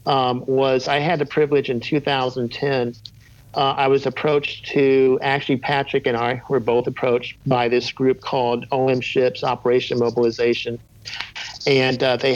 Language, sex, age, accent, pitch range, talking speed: English, male, 50-69, American, 125-145 Hz, 150 wpm